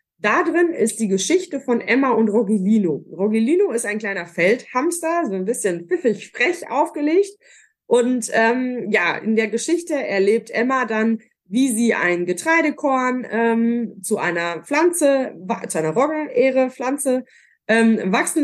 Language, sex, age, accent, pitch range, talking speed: German, female, 20-39, German, 195-265 Hz, 135 wpm